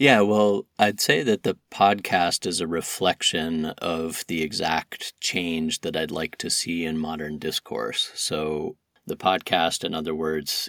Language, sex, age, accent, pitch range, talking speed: English, male, 30-49, American, 75-85 Hz, 155 wpm